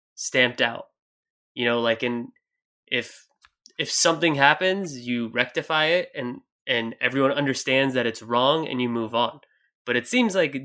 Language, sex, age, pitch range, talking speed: English, male, 20-39, 120-155 Hz, 160 wpm